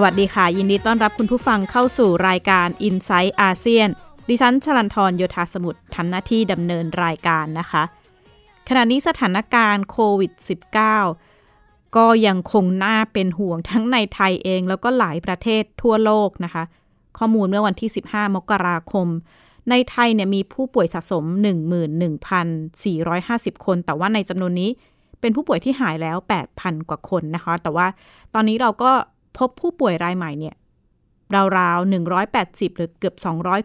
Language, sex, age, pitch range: Thai, female, 20-39, 175-225 Hz